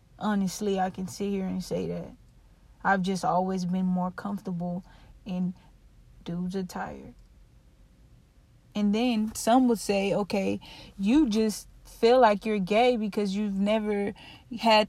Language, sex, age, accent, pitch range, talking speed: English, female, 20-39, American, 190-215 Hz, 135 wpm